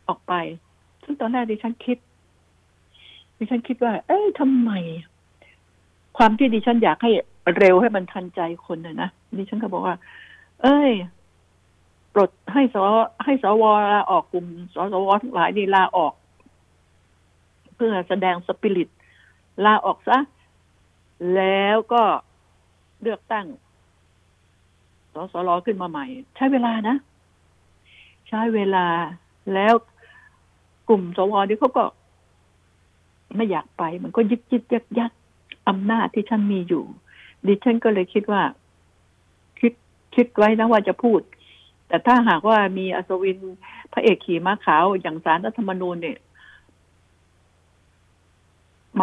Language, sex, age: Thai, female, 70-89